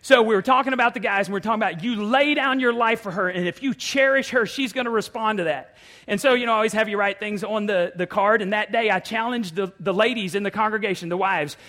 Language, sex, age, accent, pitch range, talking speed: English, male, 40-59, American, 175-225 Hz, 295 wpm